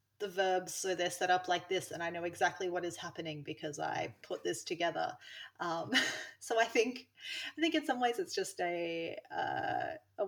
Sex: female